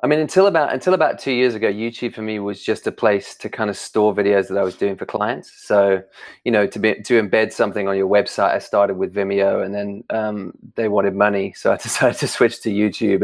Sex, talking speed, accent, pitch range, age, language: male, 250 wpm, British, 100-120 Hz, 30-49, English